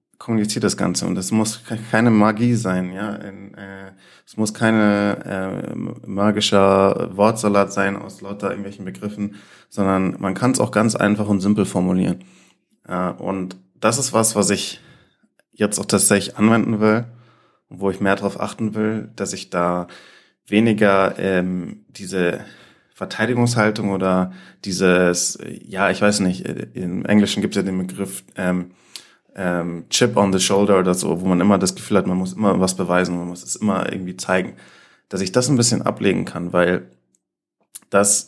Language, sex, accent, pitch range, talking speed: German, male, German, 95-105 Hz, 165 wpm